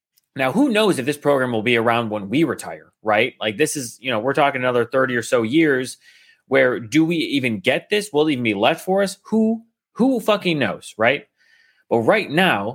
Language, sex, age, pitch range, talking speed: English, male, 30-49, 130-205 Hz, 220 wpm